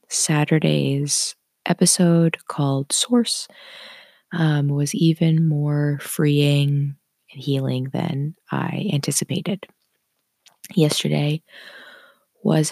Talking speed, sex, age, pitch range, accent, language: 75 wpm, female, 20-39, 145-180 Hz, American, English